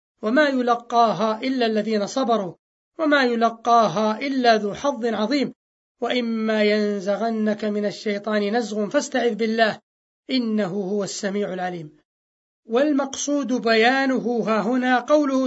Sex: male